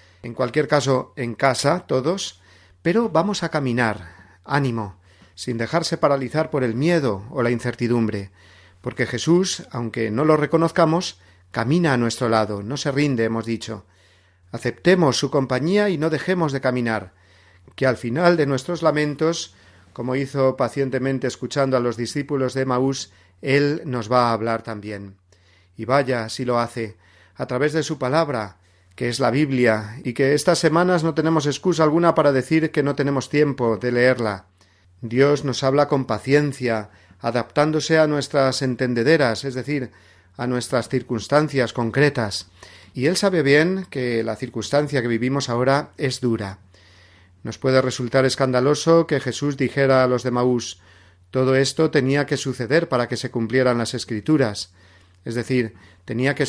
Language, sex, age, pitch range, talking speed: Spanish, male, 40-59, 110-145 Hz, 155 wpm